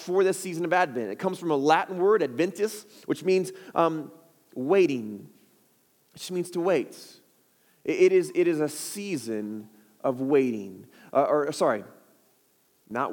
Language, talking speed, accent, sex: English, 145 wpm, American, male